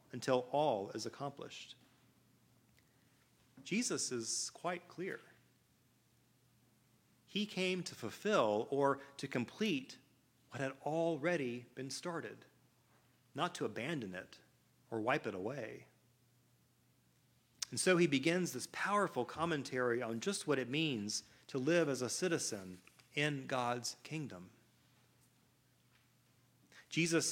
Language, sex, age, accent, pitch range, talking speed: English, male, 40-59, American, 120-160 Hz, 110 wpm